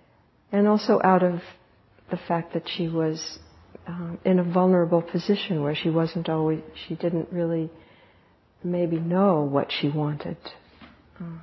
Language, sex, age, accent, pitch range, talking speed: English, female, 60-79, American, 155-185 Hz, 140 wpm